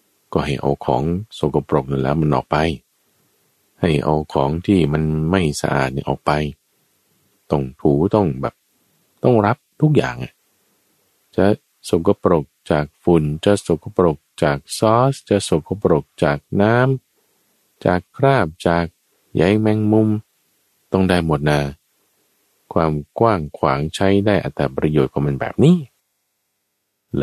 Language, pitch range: Thai, 75-100 Hz